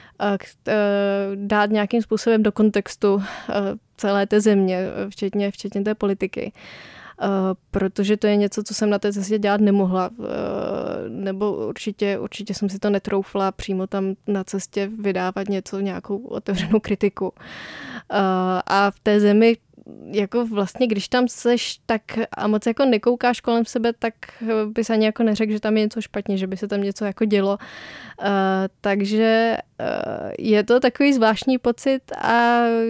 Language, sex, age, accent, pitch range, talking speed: Czech, female, 20-39, native, 200-220 Hz, 145 wpm